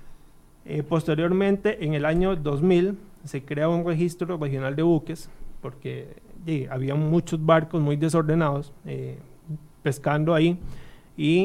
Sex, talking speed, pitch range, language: male, 125 wpm, 145-175 Hz, Spanish